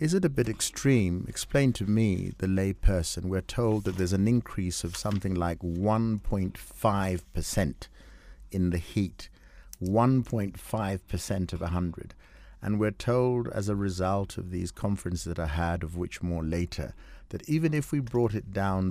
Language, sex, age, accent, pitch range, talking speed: English, male, 50-69, British, 90-115 Hz, 165 wpm